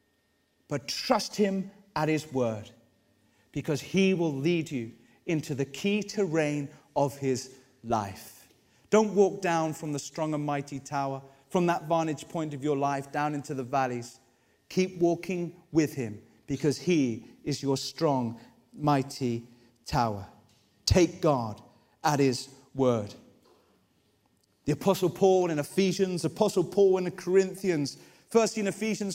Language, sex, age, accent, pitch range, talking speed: English, male, 30-49, British, 140-205 Hz, 140 wpm